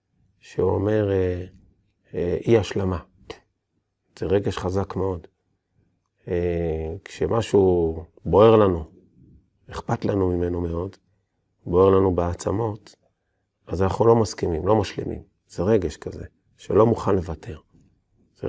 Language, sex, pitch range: Hebrew, male, 90-100 Hz